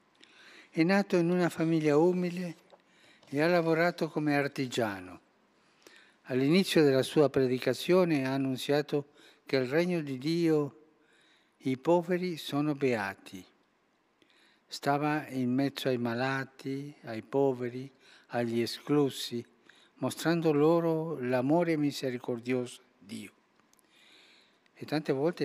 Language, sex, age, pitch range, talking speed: Italian, male, 60-79, 125-155 Hz, 105 wpm